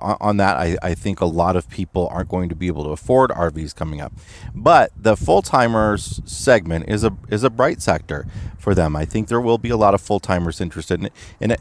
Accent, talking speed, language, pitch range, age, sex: American, 225 wpm, English, 90-115 Hz, 30-49, male